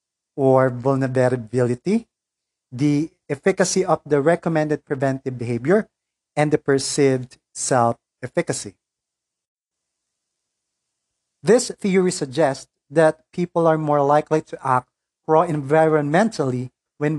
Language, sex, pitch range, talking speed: English, male, 130-155 Hz, 85 wpm